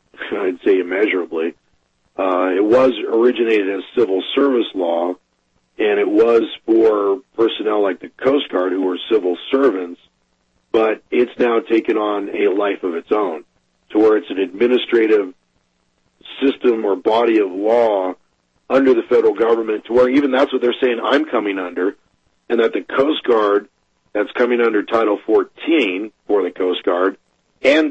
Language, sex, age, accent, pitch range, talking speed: English, male, 40-59, American, 90-135 Hz, 155 wpm